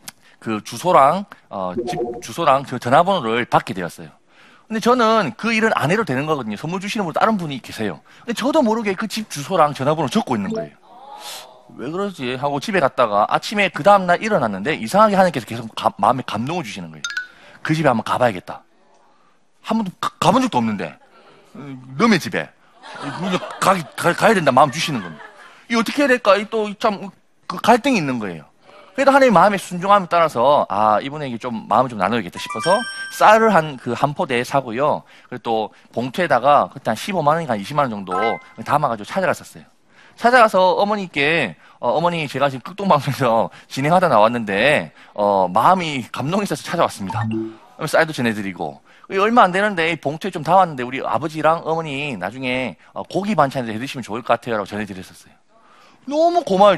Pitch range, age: 125-215 Hz, 40-59